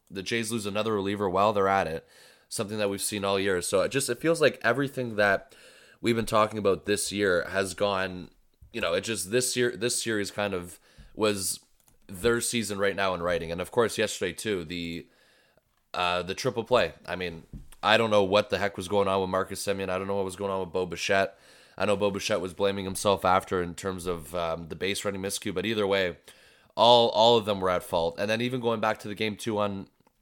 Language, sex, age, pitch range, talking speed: English, male, 20-39, 95-110 Hz, 235 wpm